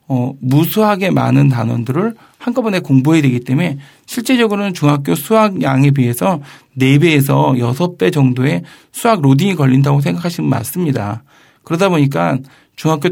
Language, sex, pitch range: Korean, male, 135-180 Hz